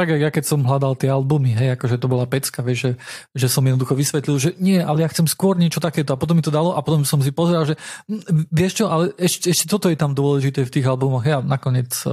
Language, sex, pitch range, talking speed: Slovak, male, 130-150 Hz, 255 wpm